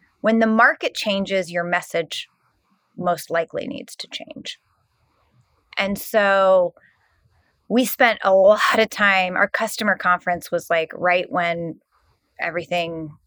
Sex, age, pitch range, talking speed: female, 30-49, 175-240 Hz, 120 wpm